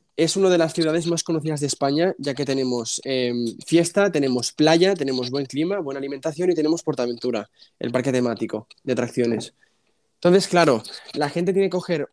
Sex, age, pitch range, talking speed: male, 20-39, 135-175 Hz, 180 wpm